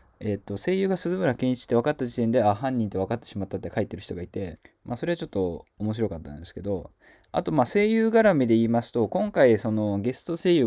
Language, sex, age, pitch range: Japanese, male, 20-39, 100-155 Hz